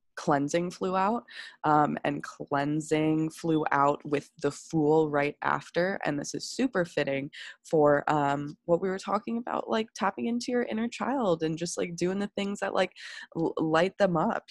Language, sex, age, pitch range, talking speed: English, female, 20-39, 140-160 Hz, 175 wpm